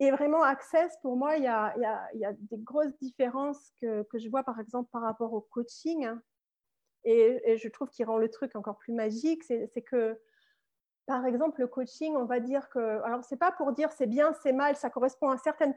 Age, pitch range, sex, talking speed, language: 30-49, 225-280 Hz, female, 240 wpm, French